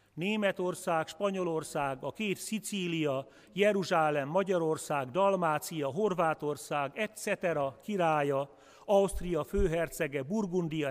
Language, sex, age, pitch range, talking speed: Hungarian, male, 40-59, 130-185 Hz, 75 wpm